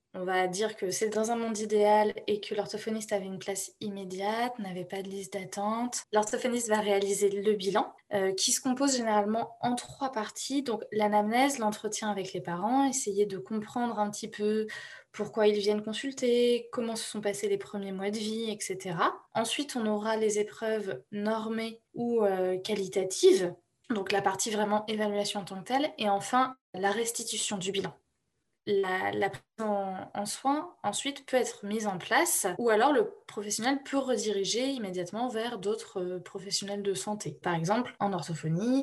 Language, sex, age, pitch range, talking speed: French, female, 20-39, 200-230 Hz, 175 wpm